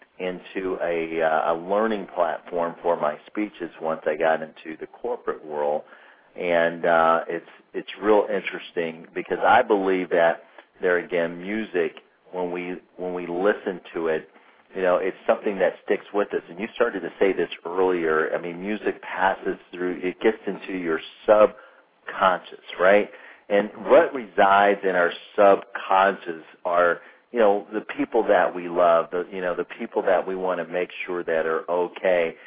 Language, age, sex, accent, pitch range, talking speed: English, 40-59, male, American, 80-95 Hz, 165 wpm